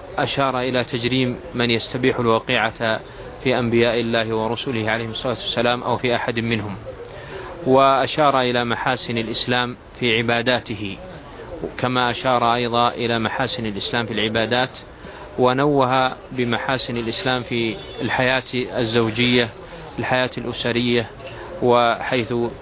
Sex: male